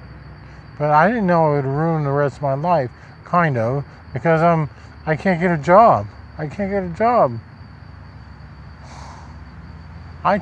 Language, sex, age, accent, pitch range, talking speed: English, male, 50-69, American, 115-160 Hz, 155 wpm